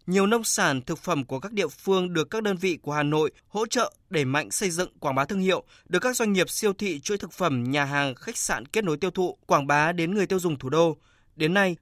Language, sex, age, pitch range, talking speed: Vietnamese, male, 20-39, 150-190 Hz, 270 wpm